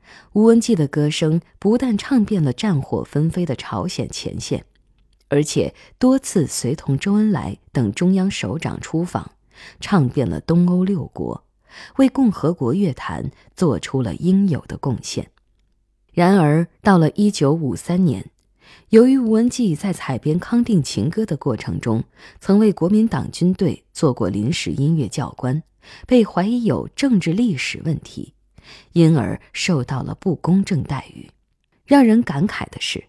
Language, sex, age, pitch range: Chinese, female, 20-39, 135-200 Hz